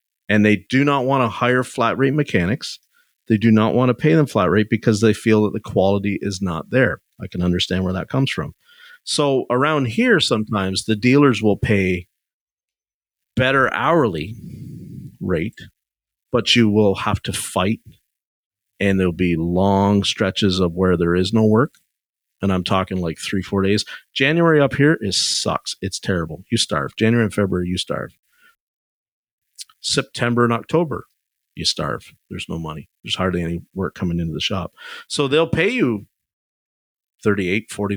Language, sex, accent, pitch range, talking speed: English, male, American, 95-125 Hz, 170 wpm